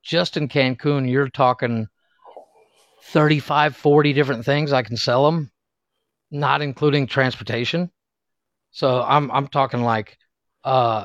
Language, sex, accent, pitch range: English, male, American, 120-140 Hz